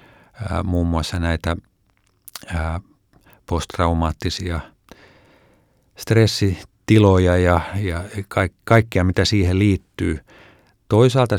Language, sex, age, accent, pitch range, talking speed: Finnish, male, 50-69, native, 85-100 Hz, 65 wpm